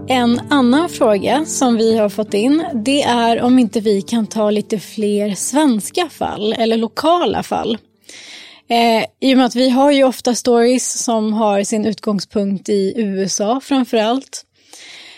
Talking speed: 155 wpm